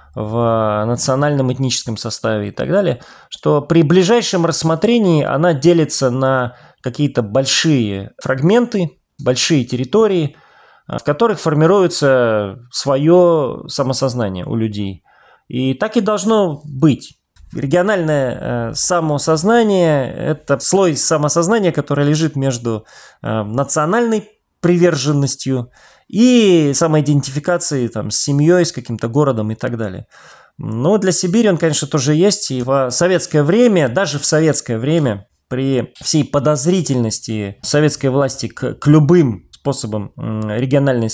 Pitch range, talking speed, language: 120-165 Hz, 110 wpm, Russian